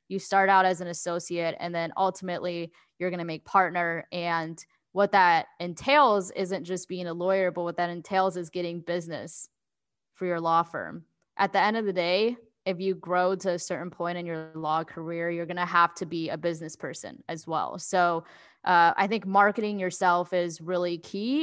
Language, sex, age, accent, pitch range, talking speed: English, female, 10-29, American, 170-195 Hz, 200 wpm